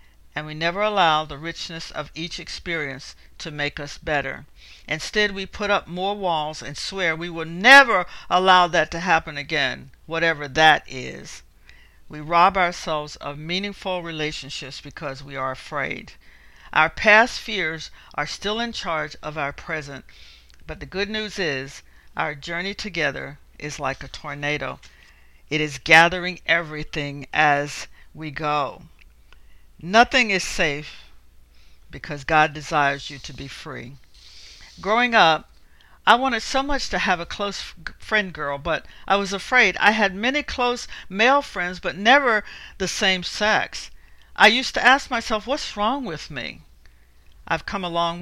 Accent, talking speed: American, 150 wpm